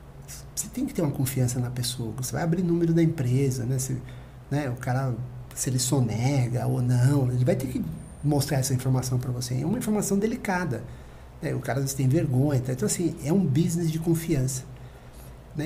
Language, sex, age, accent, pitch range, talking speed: Portuguese, male, 60-79, Brazilian, 130-160 Hz, 205 wpm